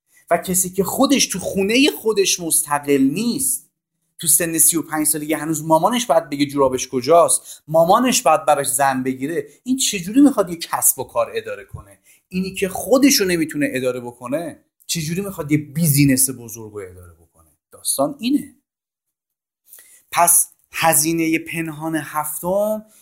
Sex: male